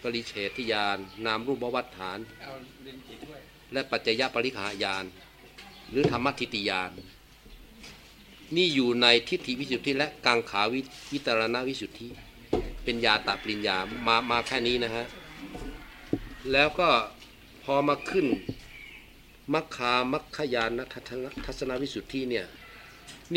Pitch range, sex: 110-135 Hz, male